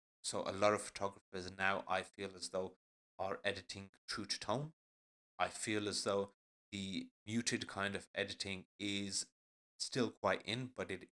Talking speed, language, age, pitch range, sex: 160 wpm, English, 30-49, 70-105 Hz, male